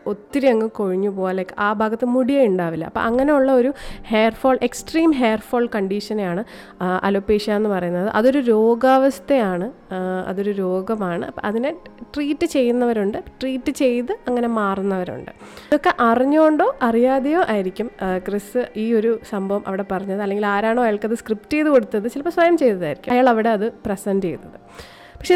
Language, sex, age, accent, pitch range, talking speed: Malayalam, female, 30-49, native, 195-250 Hz, 130 wpm